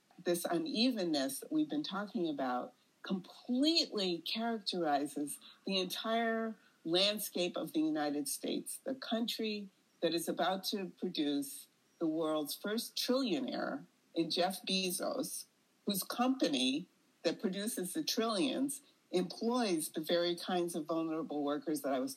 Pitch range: 160-260 Hz